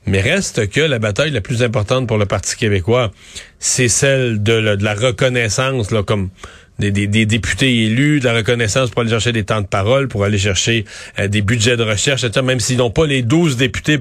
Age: 40-59